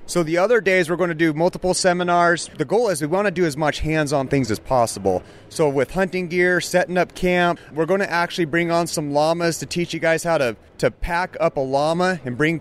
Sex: male